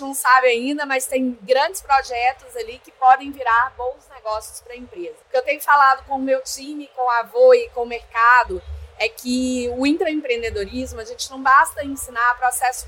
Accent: Brazilian